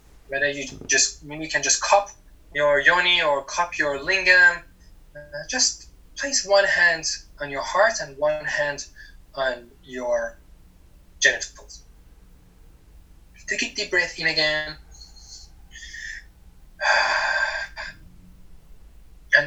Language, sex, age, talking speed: German, male, 20-39, 105 wpm